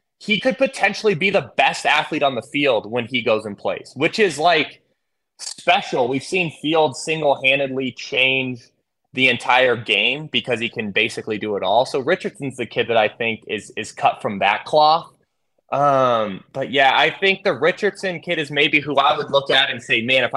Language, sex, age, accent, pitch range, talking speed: English, male, 20-39, American, 130-170 Hz, 195 wpm